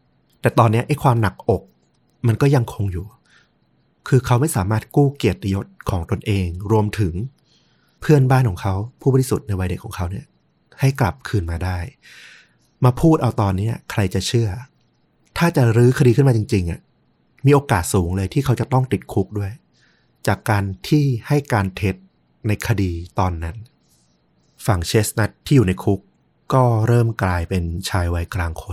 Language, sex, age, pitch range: Thai, male, 30-49, 95-125 Hz